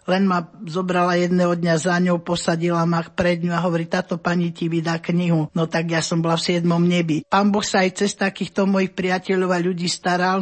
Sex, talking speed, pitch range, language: male, 205 wpm, 175-190 Hz, Slovak